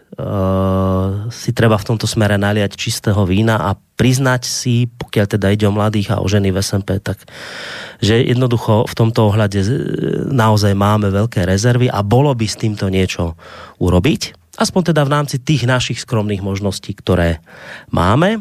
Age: 30-49